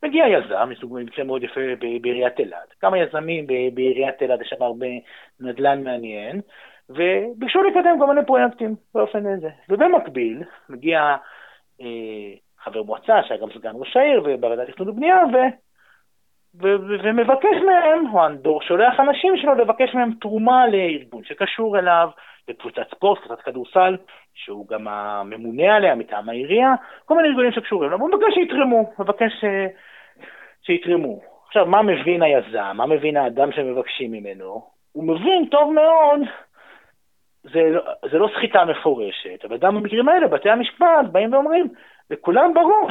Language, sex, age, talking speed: Hebrew, male, 30-49, 130 wpm